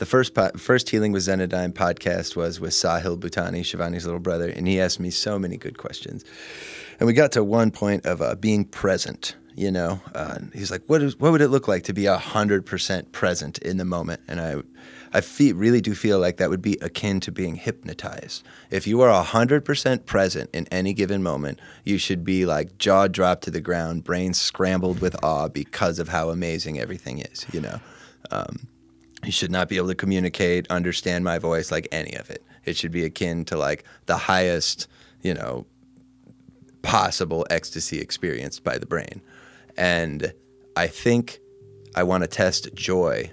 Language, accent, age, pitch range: English, American, 30-49, 85-100 Hz